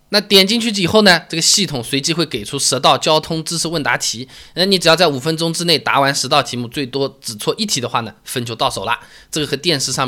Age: 20-39